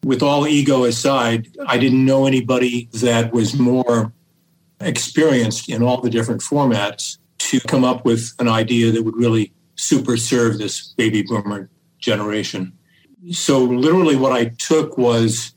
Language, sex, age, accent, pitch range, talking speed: English, male, 50-69, American, 115-140 Hz, 145 wpm